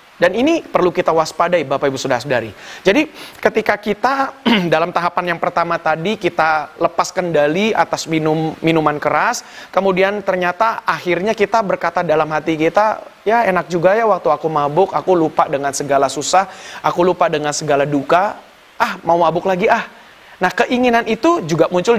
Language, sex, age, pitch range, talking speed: Indonesian, male, 30-49, 155-200 Hz, 160 wpm